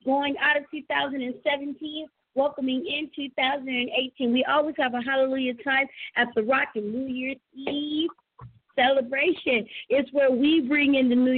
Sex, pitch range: female, 255-320 Hz